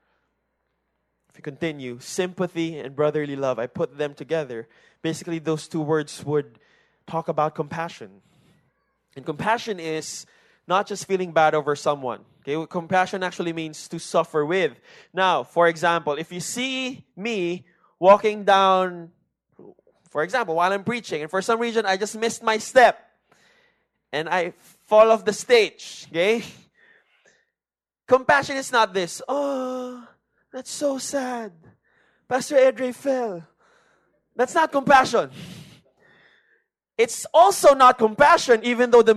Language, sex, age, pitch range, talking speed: English, male, 20-39, 170-255 Hz, 130 wpm